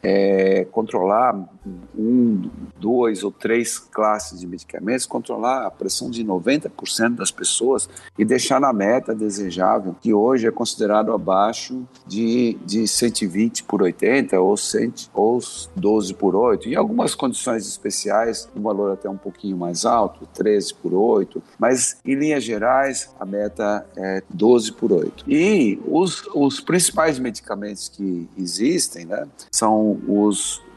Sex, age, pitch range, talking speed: male, 60-79, 95-115 Hz, 140 wpm